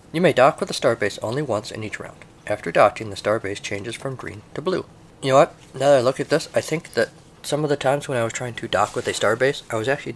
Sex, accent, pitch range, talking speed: male, American, 110-155 Hz, 285 wpm